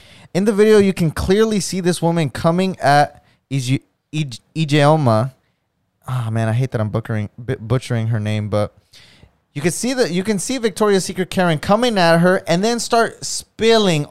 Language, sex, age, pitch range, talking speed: English, male, 20-39, 130-175 Hz, 185 wpm